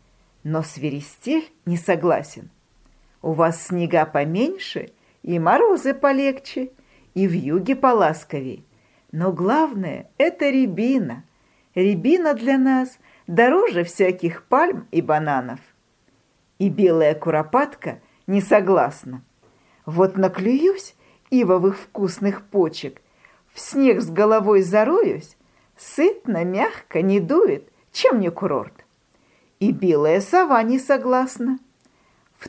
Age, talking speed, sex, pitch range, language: 50-69, 100 wpm, female, 175-275 Hz, Russian